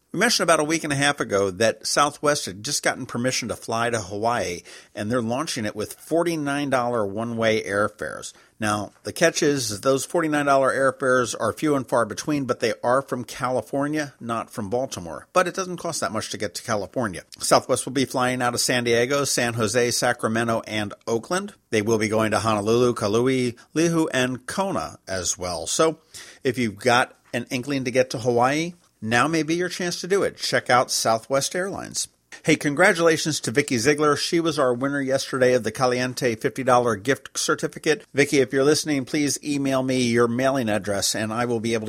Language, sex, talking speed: English, male, 195 wpm